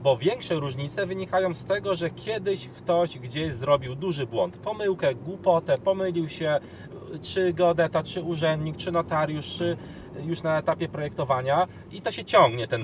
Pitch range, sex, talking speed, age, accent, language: 135-175 Hz, male, 155 wpm, 30-49, native, Polish